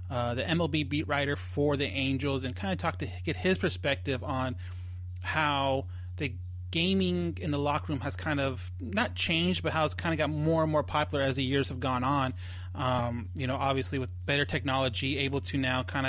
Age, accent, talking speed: 30-49, American, 210 wpm